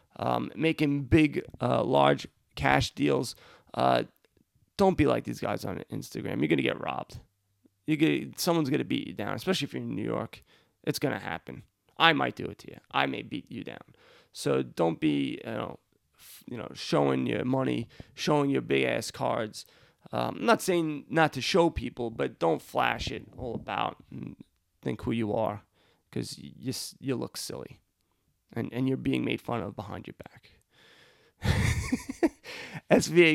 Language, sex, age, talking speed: English, male, 30-49, 180 wpm